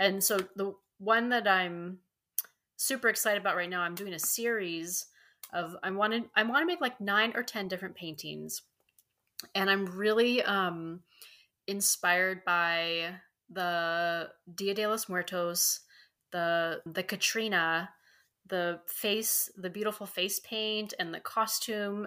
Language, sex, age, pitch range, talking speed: English, female, 30-49, 170-210 Hz, 140 wpm